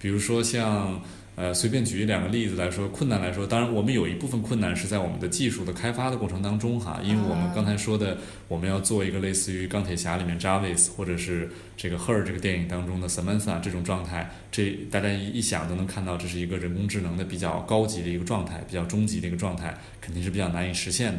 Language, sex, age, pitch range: Chinese, male, 20-39, 90-105 Hz